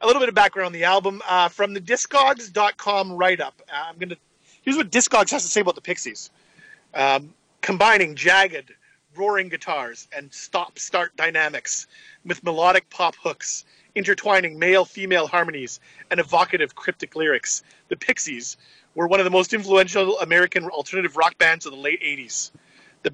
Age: 40-59